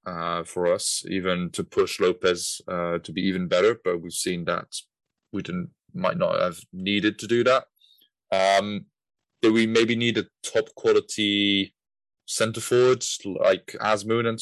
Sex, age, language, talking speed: male, 20-39, English, 160 wpm